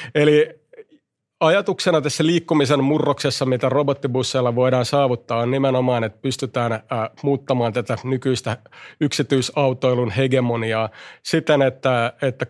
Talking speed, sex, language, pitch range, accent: 100 wpm, male, Finnish, 120-145 Hz, native